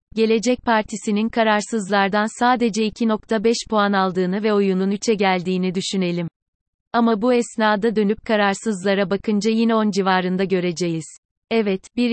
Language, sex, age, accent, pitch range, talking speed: Turkish, female, 30-49, native, 195-220 Hz, 120 wpm